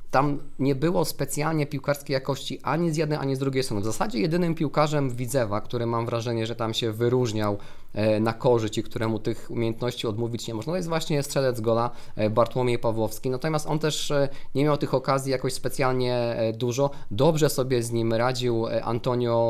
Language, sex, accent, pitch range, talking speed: Polish, male, native, 115-140 Hz, 170 wpm